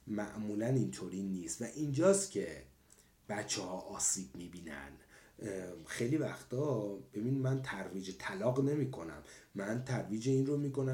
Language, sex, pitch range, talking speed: Persian, male, 105-155 Hz, 125 wpm